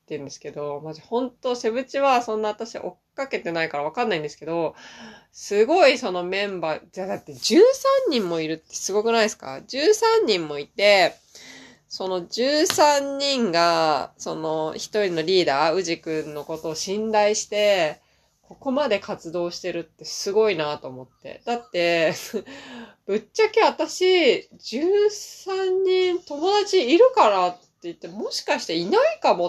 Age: 20-39